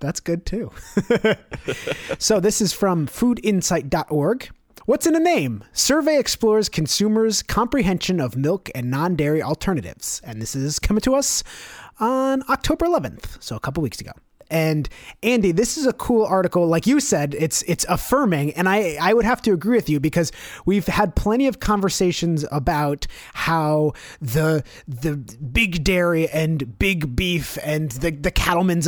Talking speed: 160 wpm